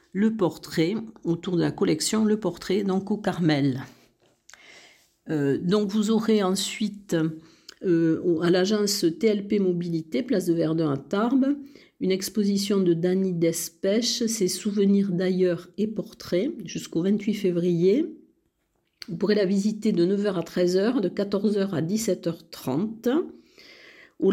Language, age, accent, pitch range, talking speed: French, 50-69, French, 175-215 Hz, 130 wpm